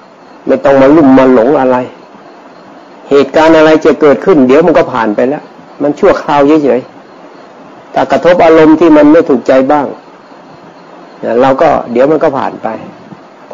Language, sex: Thai, male